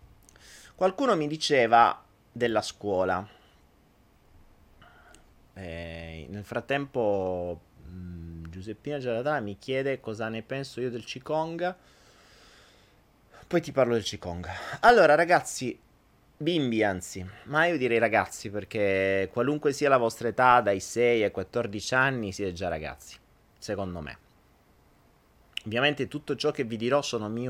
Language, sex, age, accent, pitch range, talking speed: Italian, male, 30-49, native, 95-135 Hz, 120 wpm